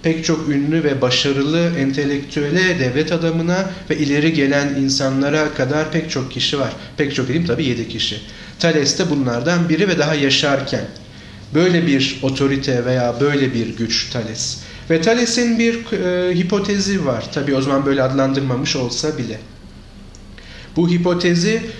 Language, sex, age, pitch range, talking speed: Turkish, male, 40-59, 130-165 Hz, 145 wpm